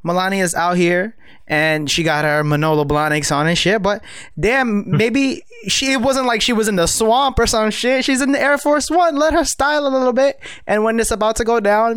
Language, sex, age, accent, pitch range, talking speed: English, male, 20-39, American, 150-215 Hz, 230 wpm